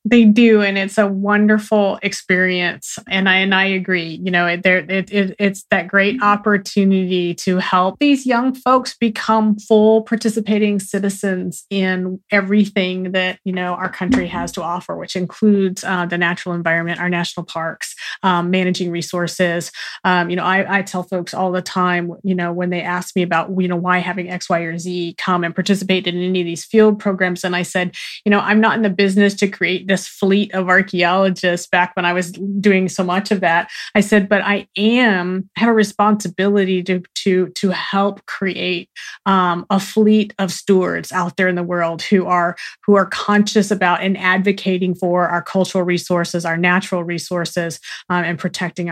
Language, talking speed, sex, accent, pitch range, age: English, 190 wpm, female, American, 175-200 Hz, 30-49